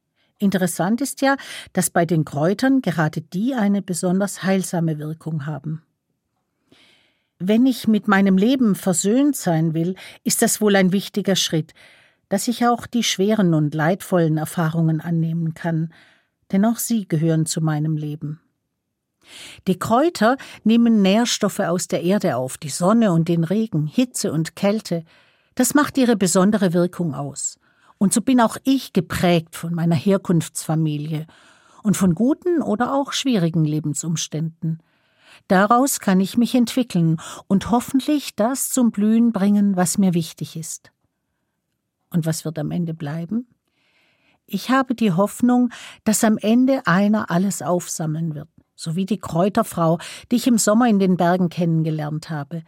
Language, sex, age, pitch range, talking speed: German, female, 50-69, 165-220 Hz, 145 wpm